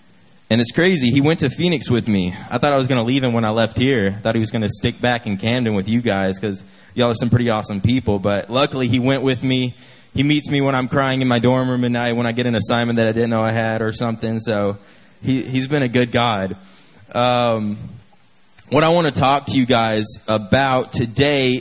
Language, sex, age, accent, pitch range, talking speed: English, male, 20-39, American, 115-140 Hz, 250 wpm